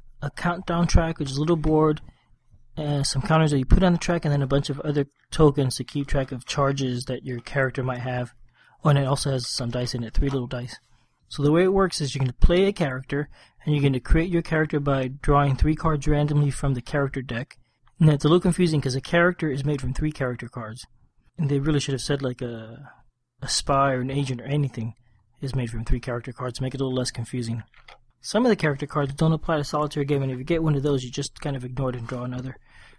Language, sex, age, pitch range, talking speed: English, male, 30-49, 125-150 Hz, 255 wpm